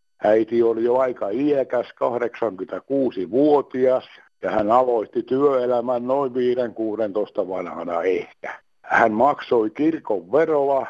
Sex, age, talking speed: male, 60-79, 105 wpm